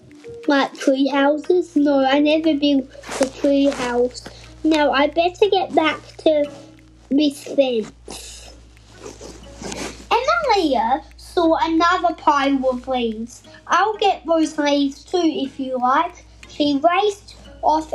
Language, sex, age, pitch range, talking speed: English, female, 10-29, 275-335 Hz, 115 wpm